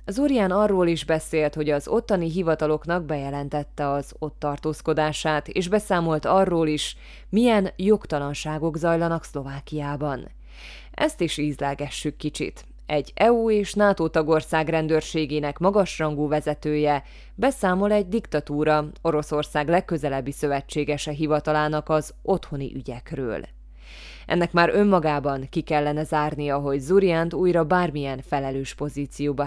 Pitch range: 145-175 Hz